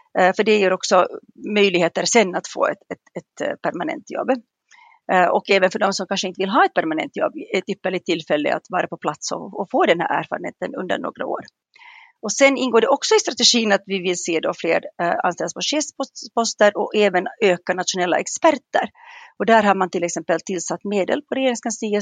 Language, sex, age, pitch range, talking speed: Swedish, female, 40-59, 185-250 Hz, 190 wpm